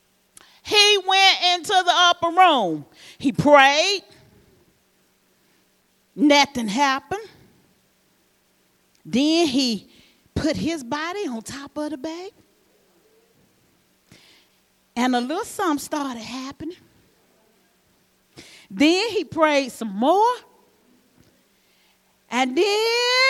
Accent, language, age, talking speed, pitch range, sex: American, English, 40-59, 85 wpm, 275-415 Hz, female